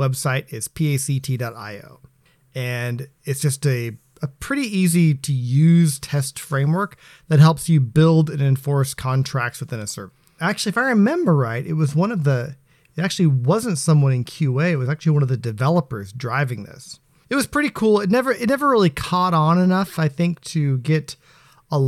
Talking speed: 180 wpm